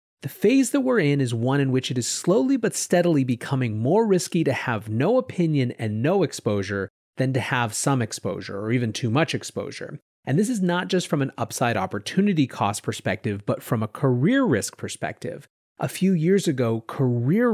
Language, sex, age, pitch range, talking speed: English, male, 30-49, 115-170 Hz, 190 wpm